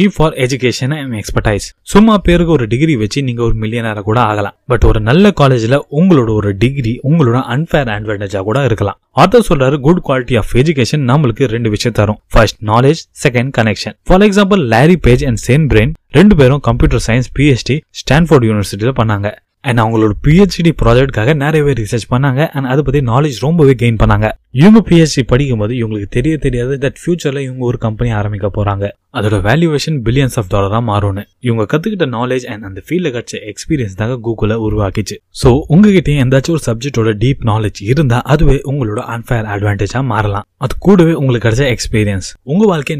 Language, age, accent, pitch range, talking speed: Tamil, 20-39, native, 110-150 Hz, 85 wpm